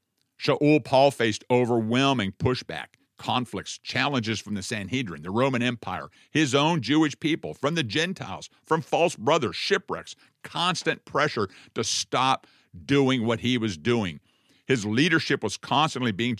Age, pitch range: 50-69, 110-140 Hz